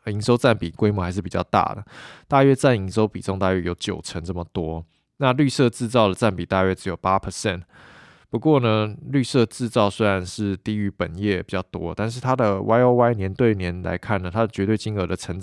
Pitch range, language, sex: 95-115 Hz, Chinese, male